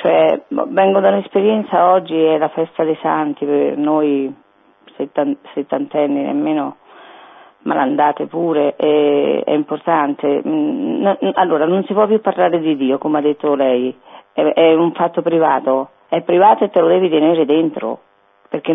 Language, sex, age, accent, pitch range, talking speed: Italian, female, 40-59, native, 140-185 Hz, 140 wpm